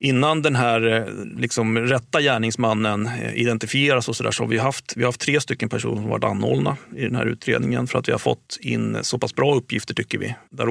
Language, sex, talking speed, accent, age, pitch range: Swedish, male, 220 wpm, native, 40-59, 115-130 Hz